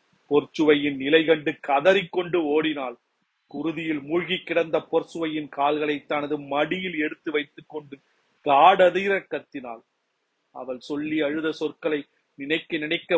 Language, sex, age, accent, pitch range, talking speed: Tamil, male, 40-59, native, 140-160 Hz, 105 wpm